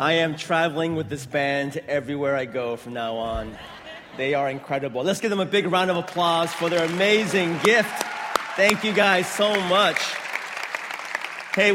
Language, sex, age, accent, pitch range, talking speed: English, male, 30-49, American, 165-205 Hz, 170 wpm